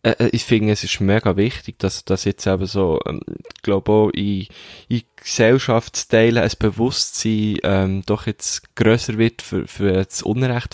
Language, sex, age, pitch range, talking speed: German, male, 20-39, 100-115 Hz, 170 wpm